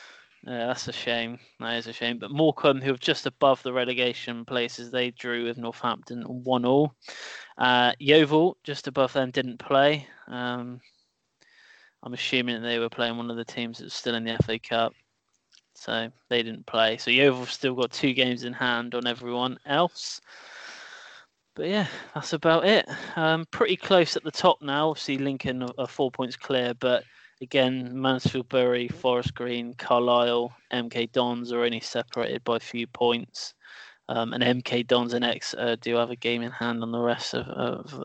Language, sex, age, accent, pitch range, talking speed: English, male, 20-39, British, 120-145 Hz, 175 wpm